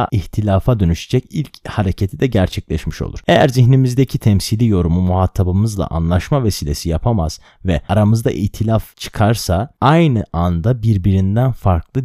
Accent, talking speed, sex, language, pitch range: native, 115 wpm, male, Turkish, 90-135 Hz